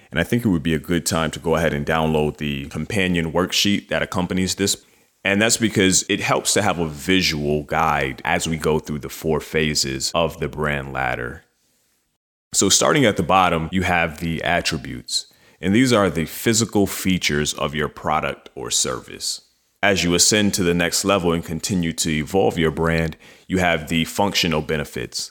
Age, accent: 30-49, American